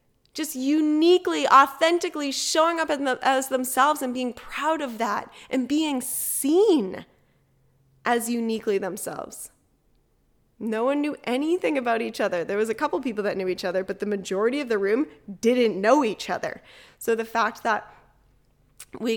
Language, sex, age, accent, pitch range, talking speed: English, female, 10-29, American, 225-300 Hz, 155 wpm